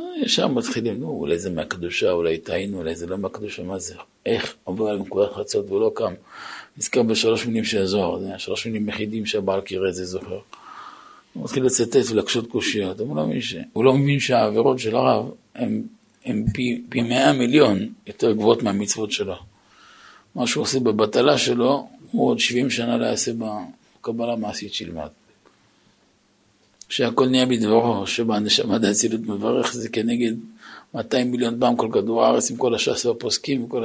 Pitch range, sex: 110-140 Hz, male